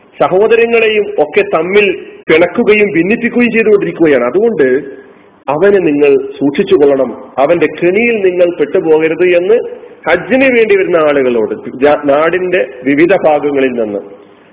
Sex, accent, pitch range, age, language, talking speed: male, native, 145-225 Hz, 40-59, Malayalam, 95 wpm